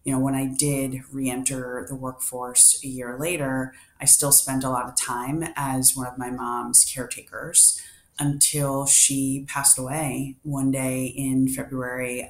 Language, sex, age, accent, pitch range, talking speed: English, female, 30-49, American, 130-145 Hz, 160 wpm